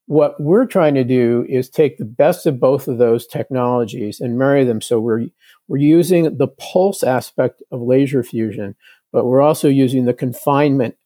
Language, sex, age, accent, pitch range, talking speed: English, male, 50-69, American, 120-145 Hz, 180 wpm